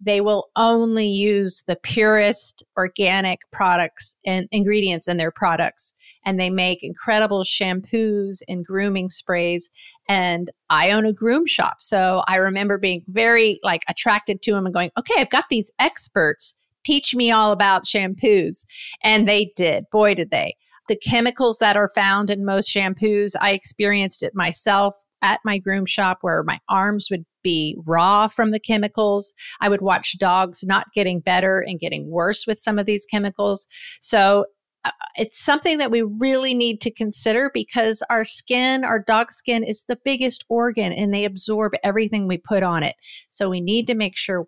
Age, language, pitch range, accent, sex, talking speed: 40-59, English, 185-220 Hz, American, female, 175 wpm